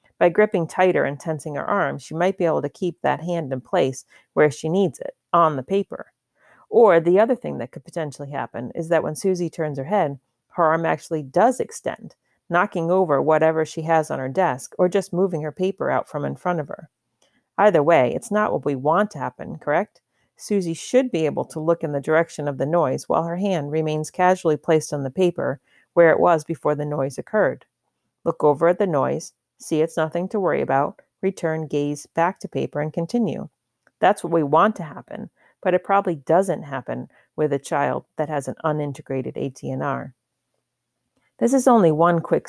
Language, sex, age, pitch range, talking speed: English, female, 40-59, 150-185 Hz, 200 wpm